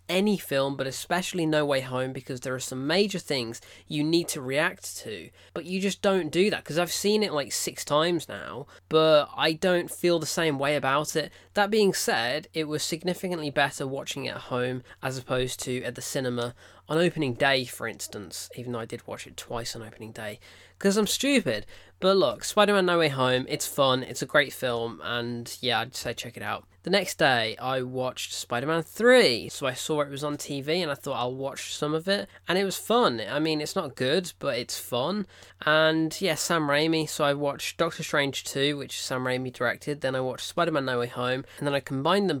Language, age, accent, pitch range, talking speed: English, 20-39, British, 125-165 Hz, 220 wpm